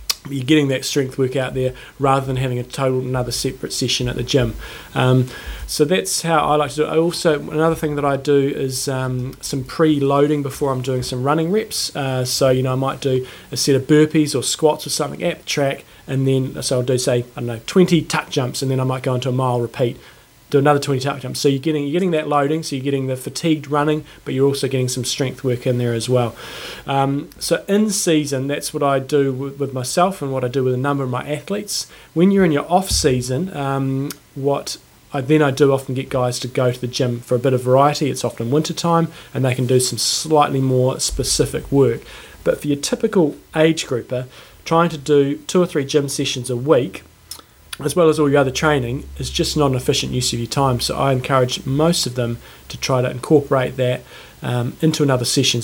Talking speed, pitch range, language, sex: 235 wpm, 125-150 Hz, English, male